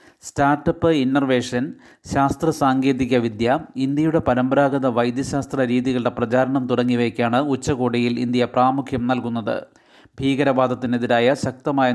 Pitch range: 125-140 Hz